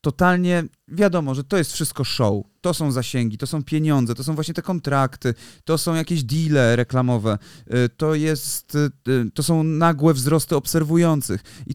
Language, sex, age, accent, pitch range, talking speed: Polish, male, 30-49, native, 125-165 Hz, 160 wpm